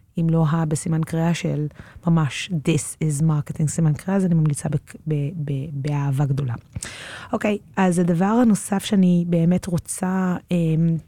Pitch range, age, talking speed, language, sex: 160-195 Hz, 30-49, 150 wpm, Hebrew, female